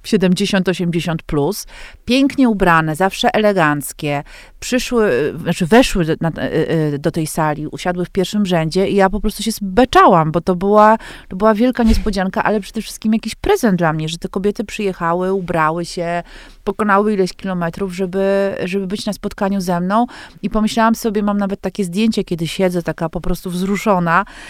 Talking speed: 160 wpm